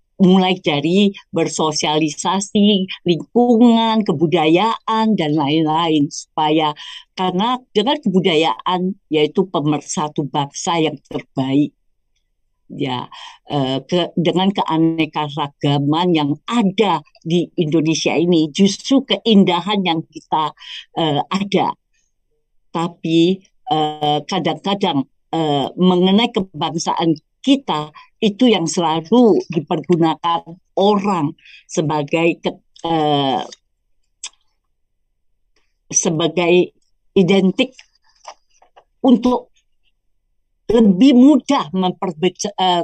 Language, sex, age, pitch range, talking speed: English, female, 50-69, 155-200 Hz, 75 wpm